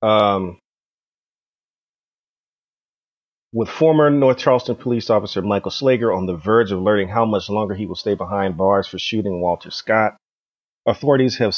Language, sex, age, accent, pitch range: English, male, 30-49, American, 95-120 Hz